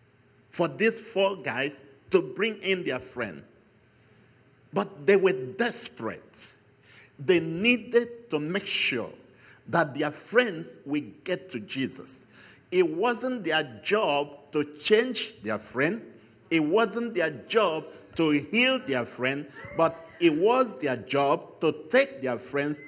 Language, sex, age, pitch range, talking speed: English, male, 50-69, 130-215 Hz, 130 wpm